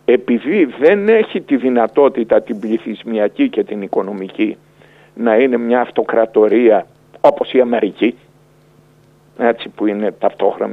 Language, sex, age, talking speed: Greek, male, 50-69, 115 wpm